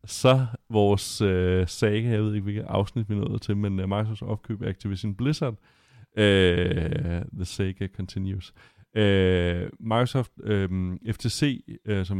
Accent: native